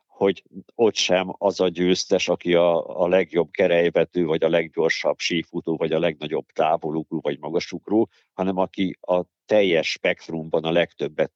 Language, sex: Hungarian, male